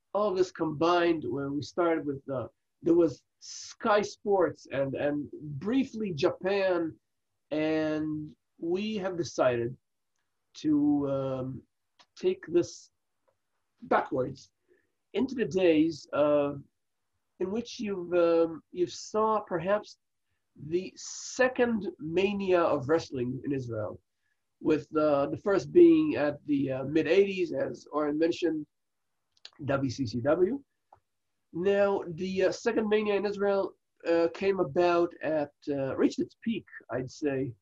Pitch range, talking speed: 140-200 Hz, 120 wpm